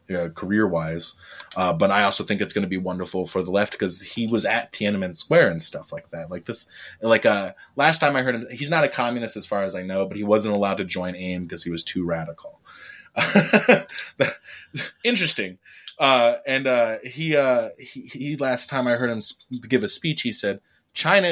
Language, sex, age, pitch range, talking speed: English, male, 20-39, 95-125 Hz, 205 wpm